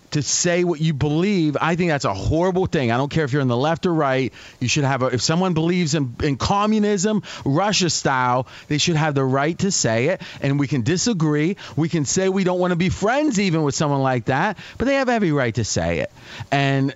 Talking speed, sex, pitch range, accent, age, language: 240 wpm, male, 140-190 Hz, American, 30-49, English